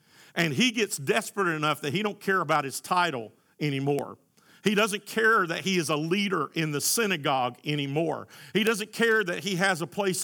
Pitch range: 175-225 Hz